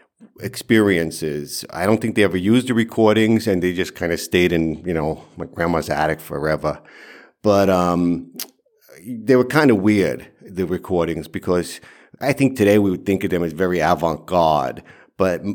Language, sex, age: English, male, 50-69